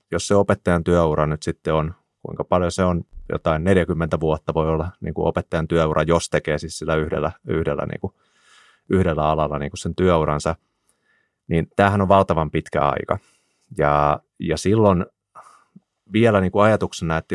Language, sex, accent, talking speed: Finnish, male, native, 165 wpm